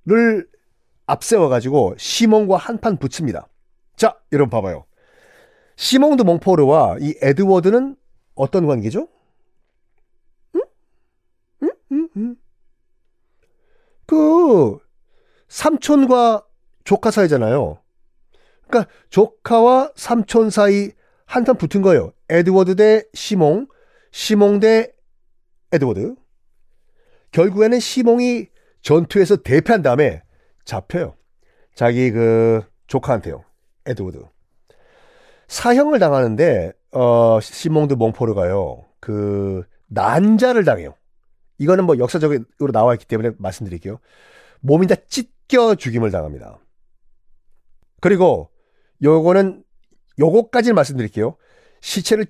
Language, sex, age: Korean, male, 40-59